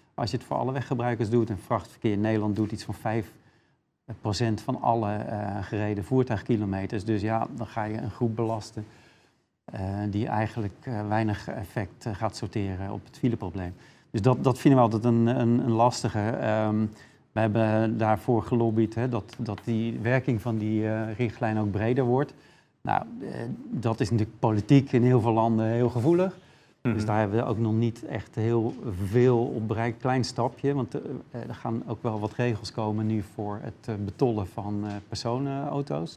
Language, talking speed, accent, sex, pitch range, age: Dutch, 165 wpm, Dutch, male, 110-130 Hz, 40-59